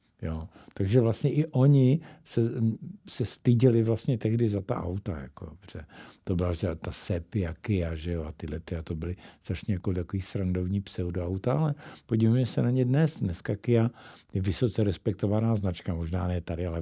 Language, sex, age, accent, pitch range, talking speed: Czech, male, 60-79, native, 95-120 Hz, 180 wpm